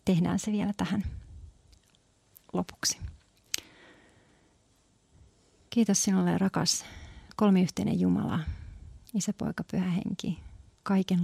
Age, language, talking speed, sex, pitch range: 40-59, Finnish, 75 wpm, female, 125-200 Hz